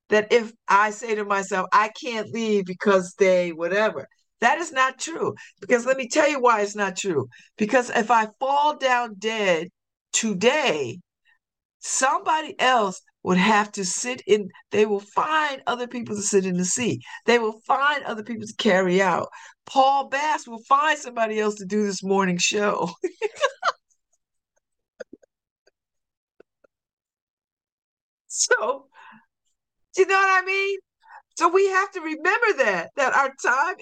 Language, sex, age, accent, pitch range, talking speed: English, female, 50-69, American, 195-290 Hz, 150 wpm